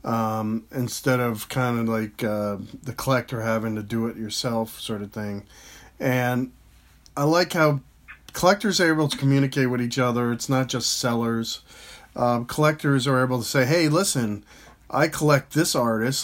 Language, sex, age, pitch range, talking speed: English, male, 40-59, 120-145 Hz, 165 wpm